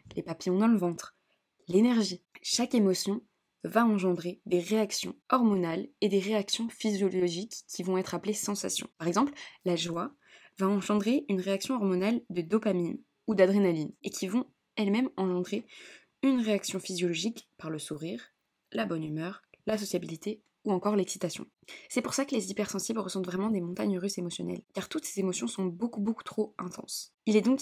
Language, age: French, 20-39